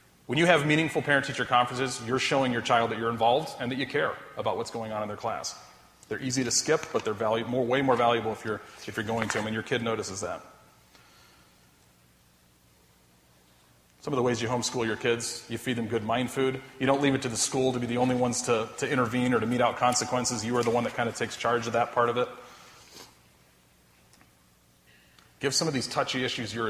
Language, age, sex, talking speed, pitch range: English, 30-49, male, 225 wpm, 110-125 Hz